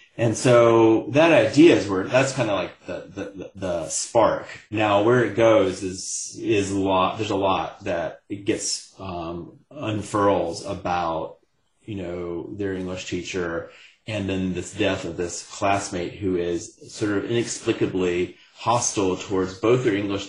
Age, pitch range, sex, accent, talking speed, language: 30-49, 90-110 Hz, male, American, 155 wpm, English